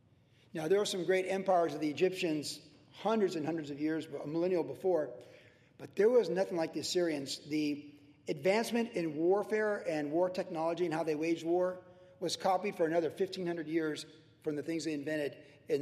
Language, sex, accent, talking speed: English, male, American, 180 wpm